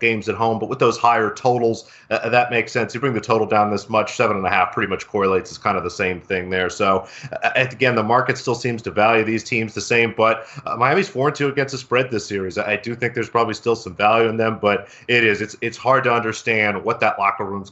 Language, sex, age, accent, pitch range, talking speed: English, male, 30-49, American, 105-120 Hz, 250 wpm